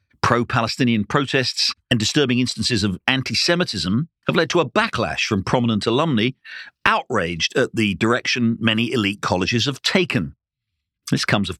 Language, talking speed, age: English, 140 wpm, 50-69